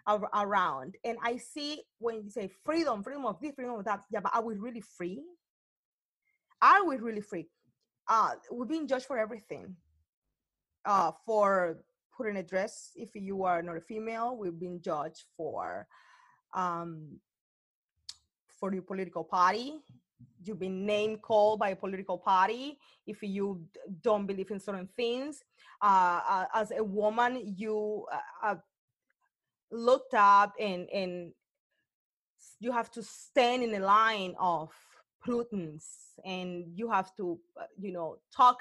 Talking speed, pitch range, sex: 140 wpm, 185-245 Hz, female